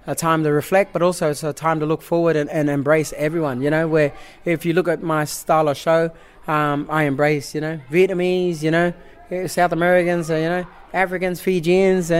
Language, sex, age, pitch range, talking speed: English, male, 20-39, 150-185 Hz, 205 wpm